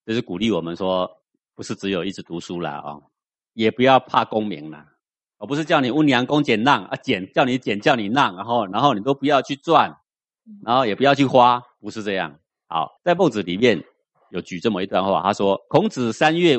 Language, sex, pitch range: Chinese, male, 90-130 Hz